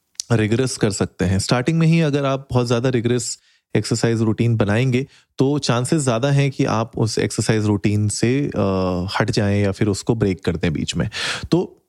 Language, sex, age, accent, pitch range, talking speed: Hindi, male, 30-49, native, 105-130 Hz, 180 wpm